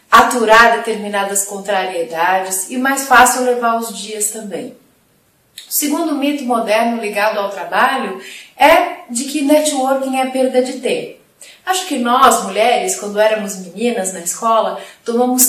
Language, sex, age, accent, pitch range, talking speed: Portuguese, female, 30-49, Brazilian, 215-270 Hz, 135 wpm